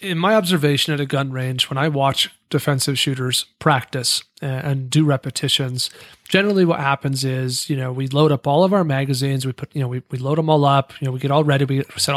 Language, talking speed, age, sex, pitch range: English, 230 wpm, 30-49, male, 140-160 Hz